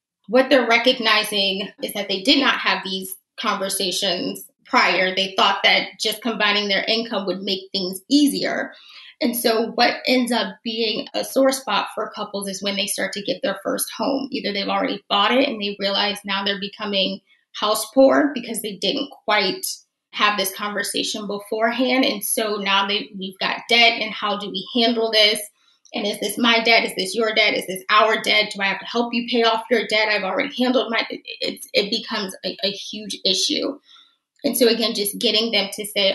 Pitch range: 200-235 Hz